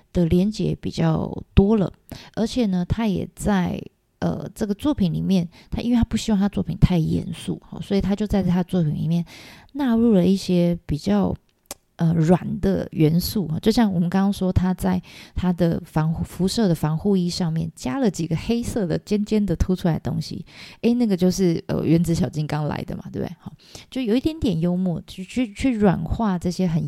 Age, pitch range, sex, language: 20-39, 170-205 Hz, female, Chinese